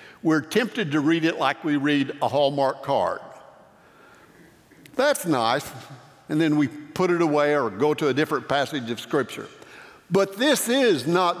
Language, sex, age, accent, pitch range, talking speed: English, male, 60-79, American, 160-225 Hz, 165 wpm